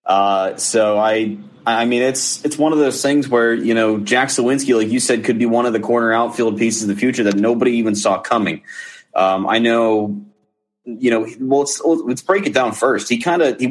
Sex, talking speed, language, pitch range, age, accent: male, 225 wpm, English, 110-135 Hz, 30-49, American